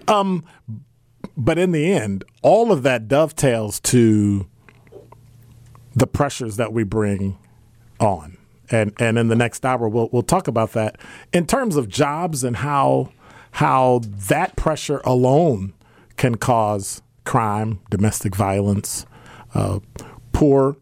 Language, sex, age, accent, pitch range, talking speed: English, male, 40-59, American, 105-130 Hz, 125 wpm